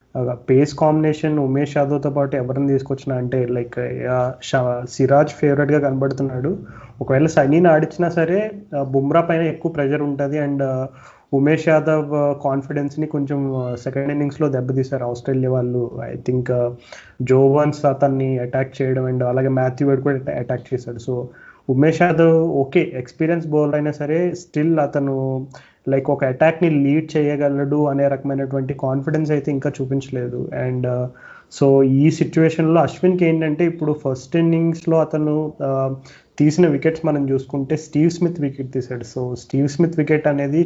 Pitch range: 130-155 Hz